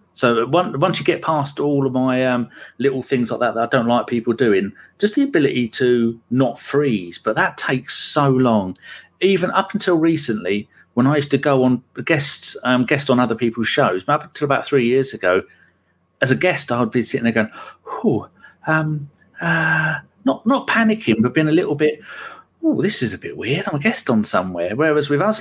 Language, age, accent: English, 40-59, British